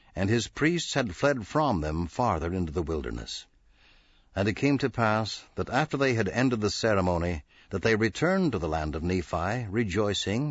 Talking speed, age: 185 wpm, 60-79